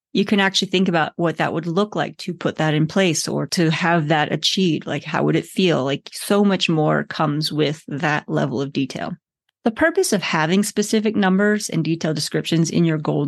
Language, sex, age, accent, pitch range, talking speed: English, female, 30-49, American, 165-215 Hz, 215 wpm